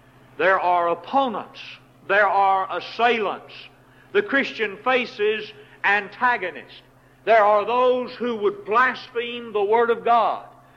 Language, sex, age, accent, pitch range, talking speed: English, male, 60-79, American, 190-250 Hz, 110 wpm